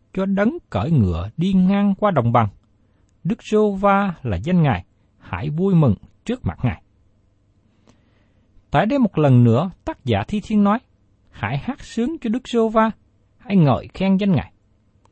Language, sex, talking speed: Vietnamese, male, 165 wpm